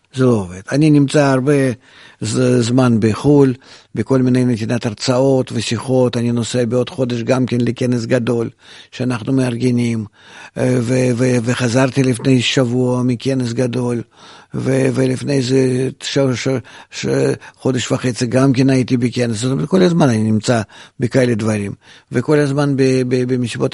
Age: 50-69